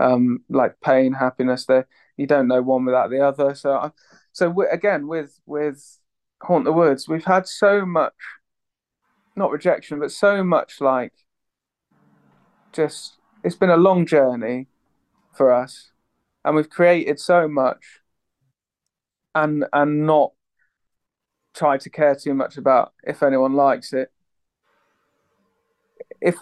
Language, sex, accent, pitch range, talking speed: English, male, British, 130-160 Hz, 130 wpm